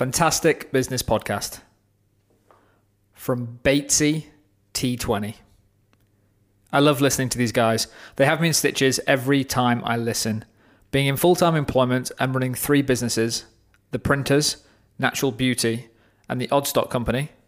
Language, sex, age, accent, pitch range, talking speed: English, male, 20-39, British, 115-145 Hz, 125 wpm